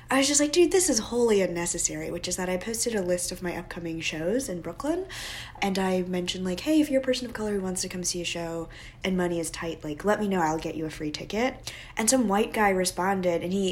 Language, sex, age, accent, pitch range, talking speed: English, female, 20-39, American, 180-255 Hz, 265 wpm